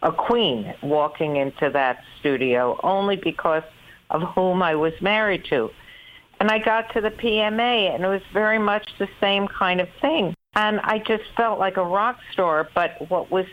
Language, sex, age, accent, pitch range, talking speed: English, female, 60-79, American, 145-185 Hz, 180 wpm